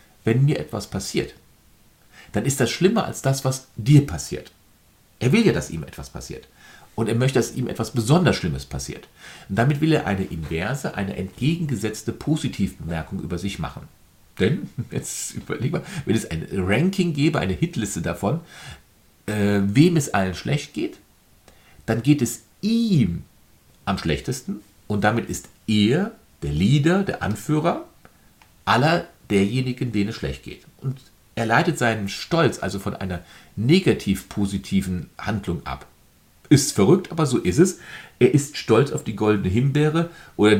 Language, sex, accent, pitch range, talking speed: German, male, German, 95-145 Hz, 155 wpm